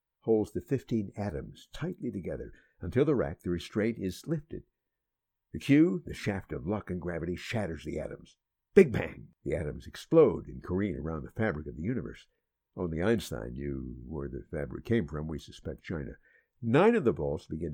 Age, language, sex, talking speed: 60-79, English, male, 180 wpm